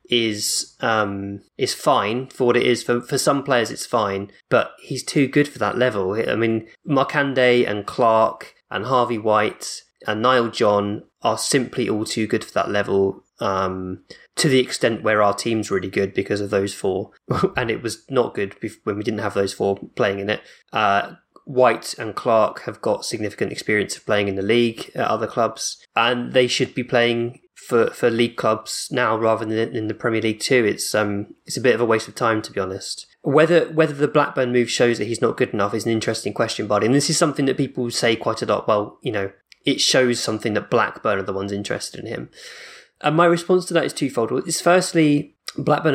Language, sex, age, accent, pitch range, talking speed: English, male, 20-39, British, 105-130 Hz, 215 wpm